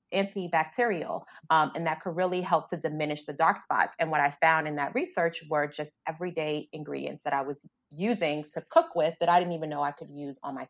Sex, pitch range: female, 145-170 Hz